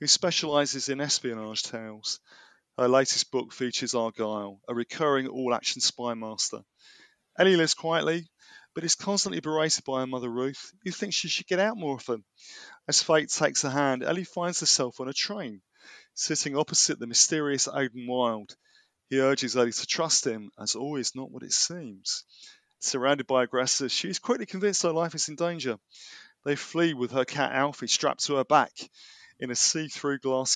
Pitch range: 125-165 Hz